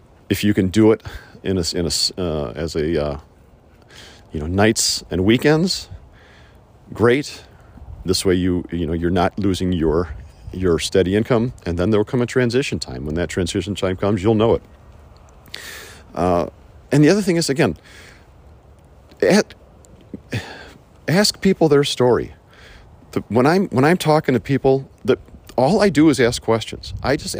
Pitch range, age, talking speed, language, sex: 95-130 Hz, 50-69, 165 wpm, English, male